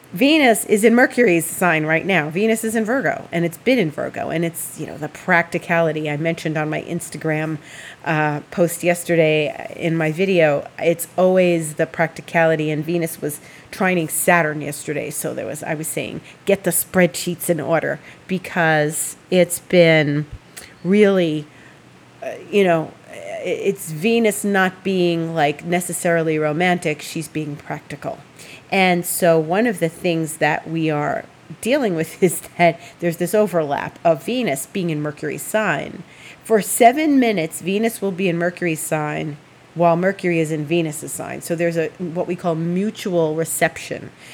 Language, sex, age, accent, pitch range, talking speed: English, female, 40-59, American, 155-190 Hz, 155 wpm